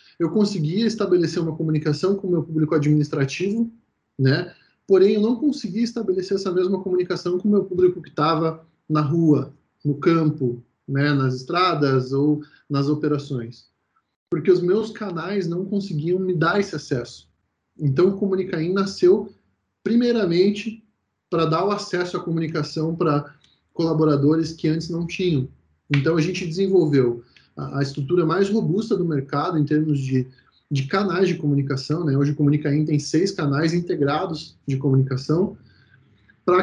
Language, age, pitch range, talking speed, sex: Portuguese, 20-39, 145-185 Hz, 145 wpm, male